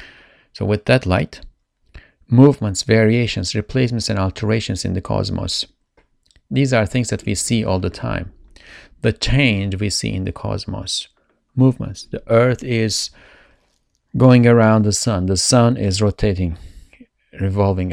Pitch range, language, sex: 95-115 Hz, English, male